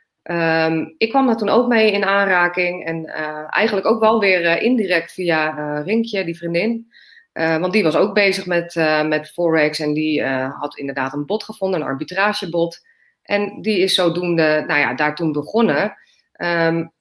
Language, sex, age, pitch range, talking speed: Dutch, female, 30-49, 160-205 Hz, 185 wpm